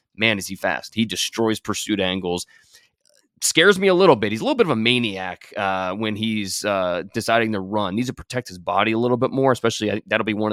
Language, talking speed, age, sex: English, 240 wpm, 20-39, male